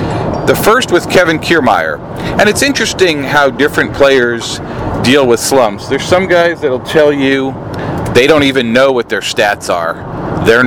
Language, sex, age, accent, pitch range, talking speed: English, male, 40-59, American, 120-150 Hz, 165 wpm